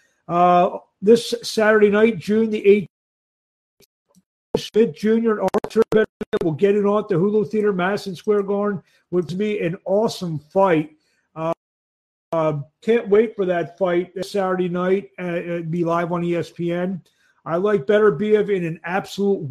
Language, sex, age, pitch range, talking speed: English, male, 50-69, 170-215 Hz, 155 wpm